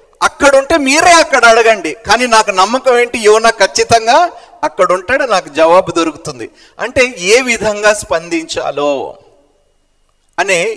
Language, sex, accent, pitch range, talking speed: Telugu, male, native, 180-255 Hz, 105 wpm